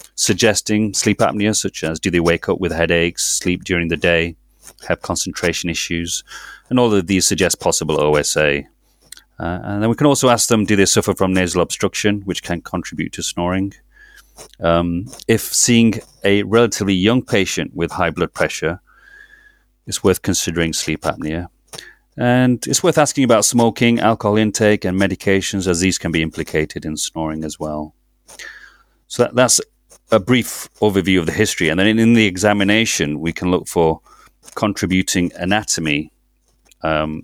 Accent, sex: British, male